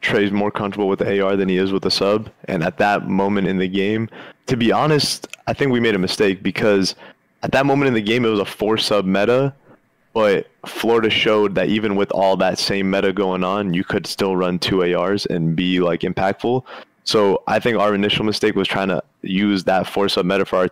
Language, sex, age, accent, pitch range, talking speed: English, male, 20-39, American, 95-105 Hz, 230 wpm